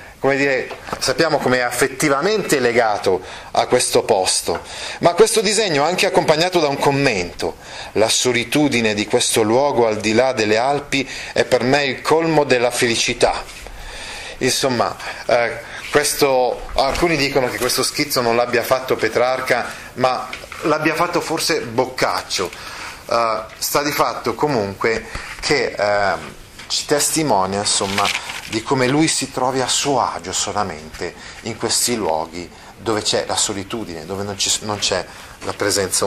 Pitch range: 115-145 Hz